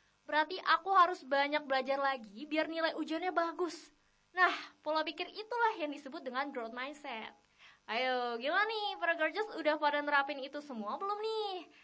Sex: female